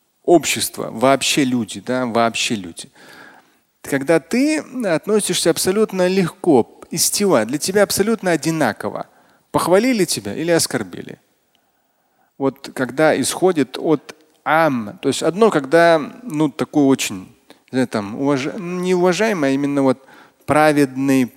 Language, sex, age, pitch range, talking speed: Russian, male, 30-49, 125-165 Hz, 105 wpm